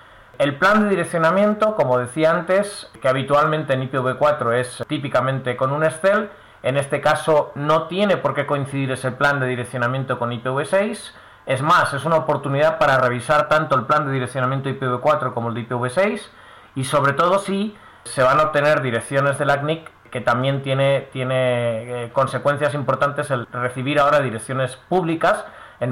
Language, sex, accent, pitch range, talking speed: Spanish, male, Spanish, 125-150 Hz, 165 wpm